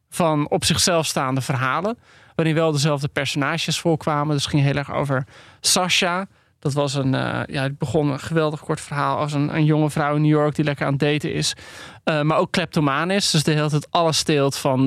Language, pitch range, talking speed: Dutch, 140-165 Hz, 215 wpm